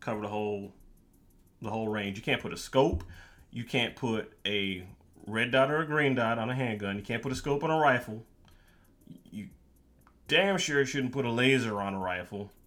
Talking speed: 200 wpm